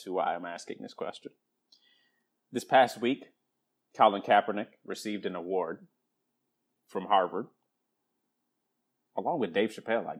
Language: English